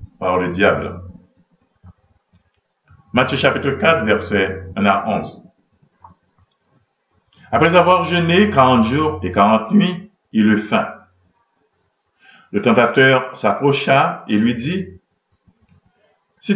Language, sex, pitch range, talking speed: French, male, 100-160 Hz, 100 wpm